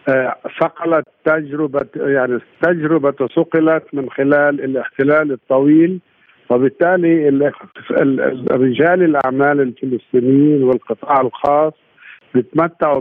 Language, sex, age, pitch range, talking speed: Arabic, male, 50-69, 130-155 Hz, 75 wpm